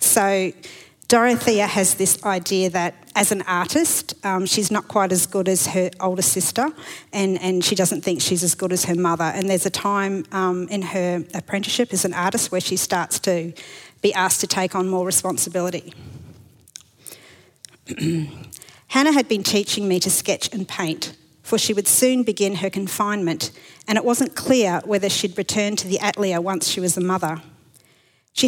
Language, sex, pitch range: English, female, 175-210 Hz